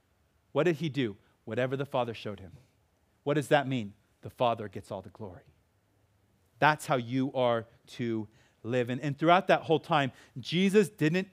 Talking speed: 175 wpm